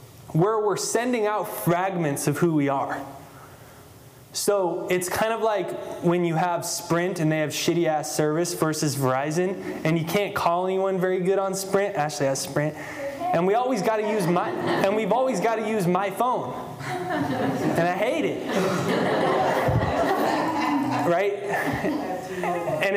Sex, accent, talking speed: male, American, 150 wpm